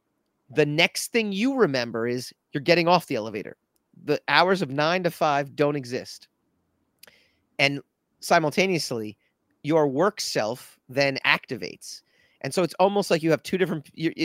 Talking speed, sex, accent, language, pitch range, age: 150 wpm, male, American, English, 125-160 Hz, 30-49